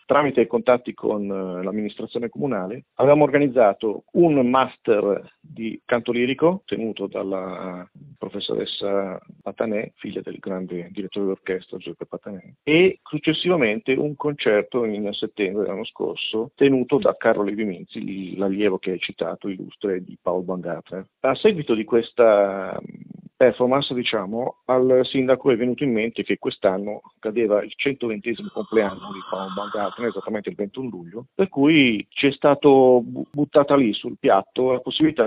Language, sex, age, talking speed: Italian, male, 40-59, 140 wpm